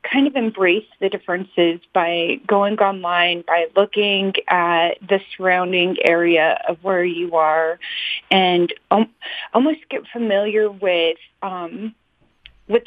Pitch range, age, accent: 180-215 Hz, 30-49, American